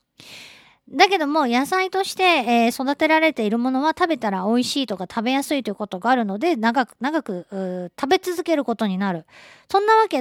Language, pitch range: Japanese, 205-300 Hz